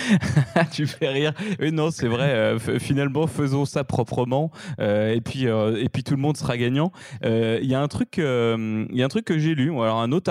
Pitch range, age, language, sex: 120-155 Hz, 20-39, French, male